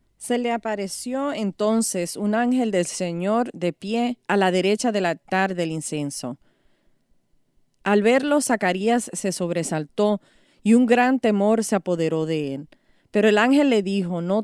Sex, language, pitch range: female, English, 175-225 Hz